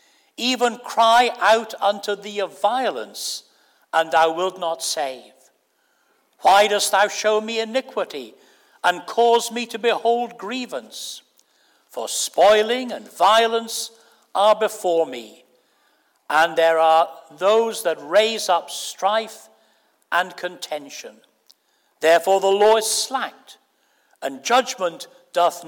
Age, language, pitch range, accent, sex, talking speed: 60-79, English, 175-235 Hz, British, male, 115 wpm